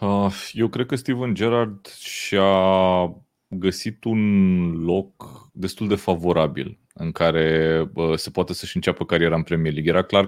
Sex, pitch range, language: male, 85-105 Hz, Romanian